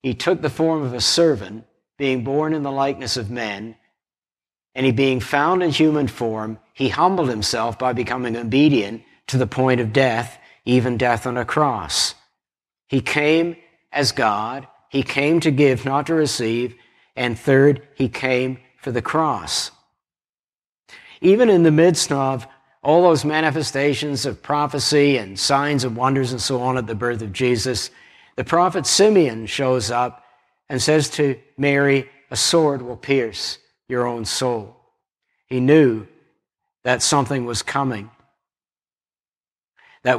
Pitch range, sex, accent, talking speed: 115-140 Hz, male, American, 150 wpm